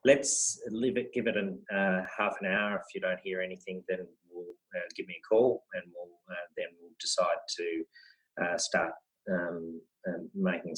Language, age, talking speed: English, 30-49, 190 wpm